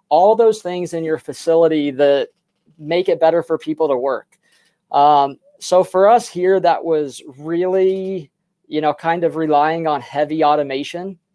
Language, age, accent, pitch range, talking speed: English, 20-39, American, 155-180 Hz, 160 wpm